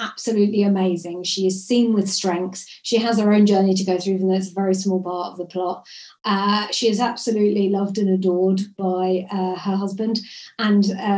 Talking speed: 200 wpm